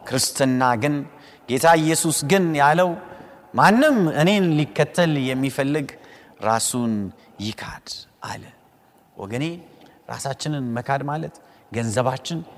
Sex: male